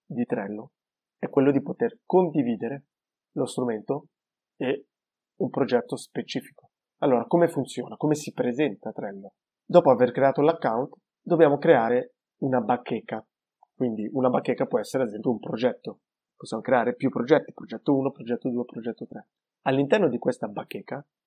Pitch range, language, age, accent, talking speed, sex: 125-170 Hz, Italian, 30-49, native, 145 wpm, male